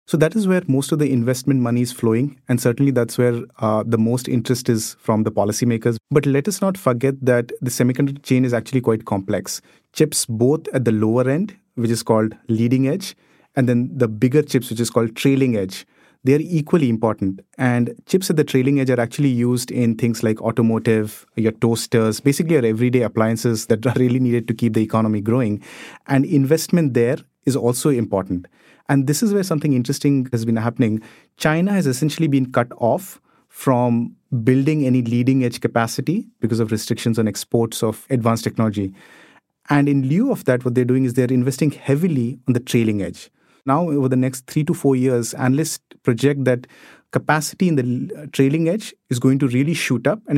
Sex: male